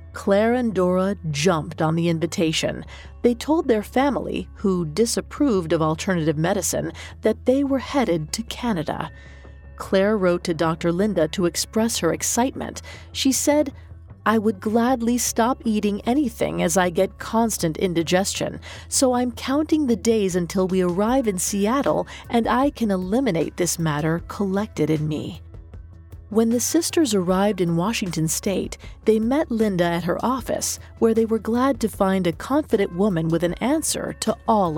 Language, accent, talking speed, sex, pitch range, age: English, American, 155 wpm, female, 170-235 Hz, 40-59